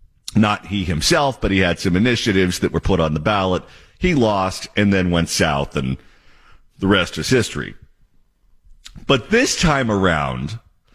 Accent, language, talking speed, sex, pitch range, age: American, English, 160 wpm, male, 85-120 Hz, 50-69